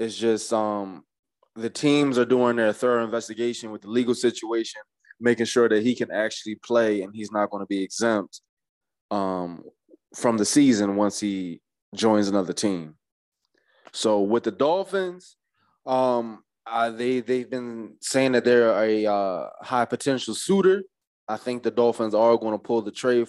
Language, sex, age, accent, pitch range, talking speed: English, male, 20-39, American, 95-115 Hz, 165 wpm